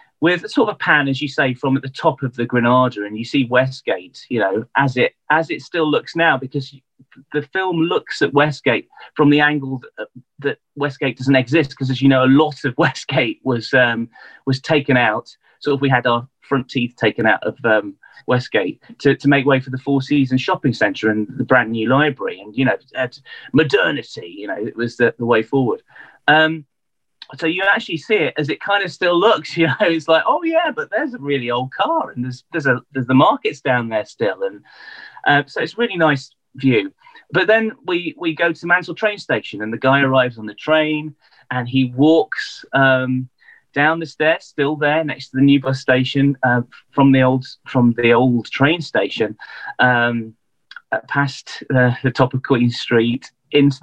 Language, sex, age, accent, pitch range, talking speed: English, male, 30-49, British, 125-155 Hz, 205 wpm